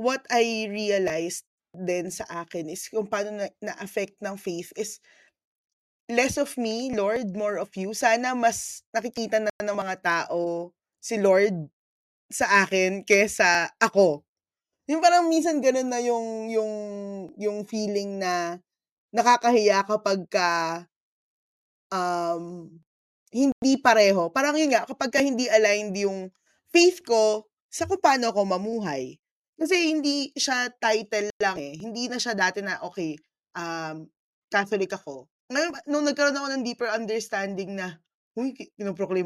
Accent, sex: native, female